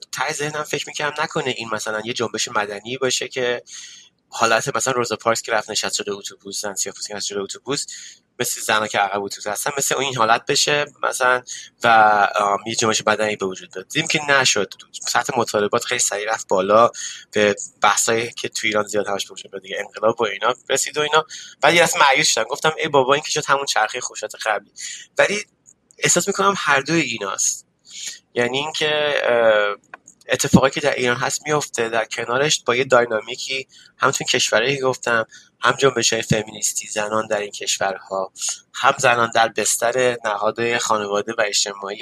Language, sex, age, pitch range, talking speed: Persian, male, 20-39, 105-140 Hz, 170 wpm